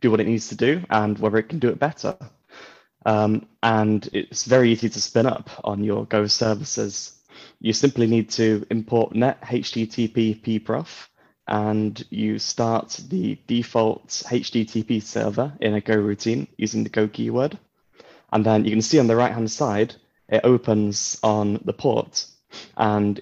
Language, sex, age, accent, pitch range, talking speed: English, male, 20-39, British, 105-115 Hz, 165 wpm